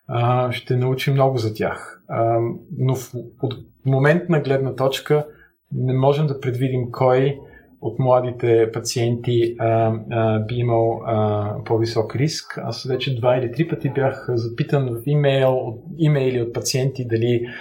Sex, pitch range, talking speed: male, 115-135 Hz, 125 wpm